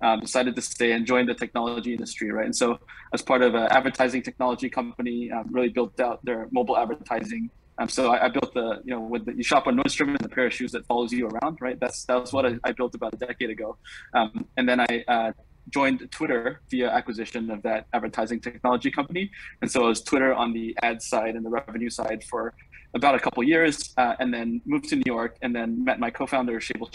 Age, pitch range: 20-39, 115-130 Hz